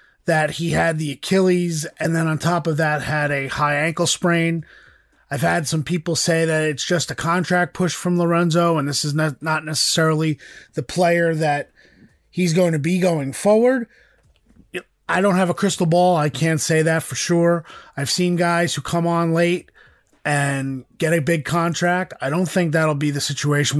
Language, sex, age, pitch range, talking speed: English, male, 30-49, 150-175 Hz, 185 wpm